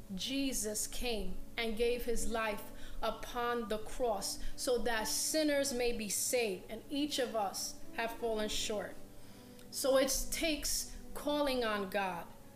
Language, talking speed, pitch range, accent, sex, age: English, 135 wpm, 220-265 Hz, American, female, 30-49